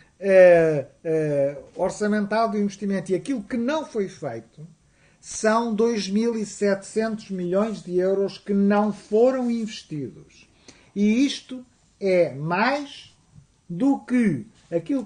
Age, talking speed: 50-69, 100 wpm